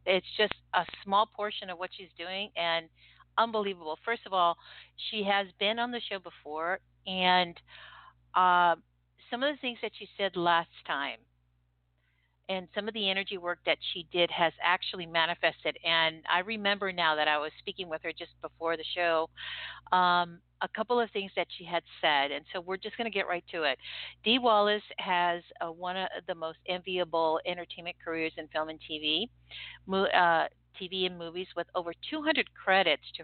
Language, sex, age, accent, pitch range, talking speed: English, female, 50-69, American, 165-200 Hz, 180 wpm